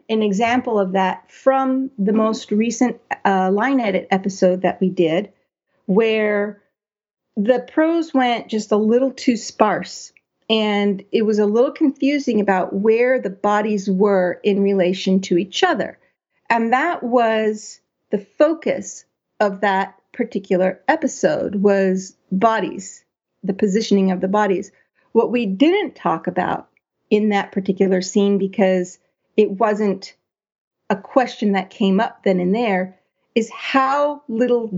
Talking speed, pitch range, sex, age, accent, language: 135 wpm, 190-240 Hz, female, 40-59, American, English